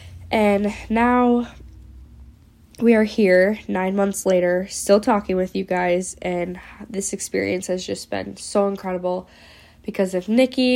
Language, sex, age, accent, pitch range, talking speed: English, female, 10-29, American, 180-200 Hz, 135 wpm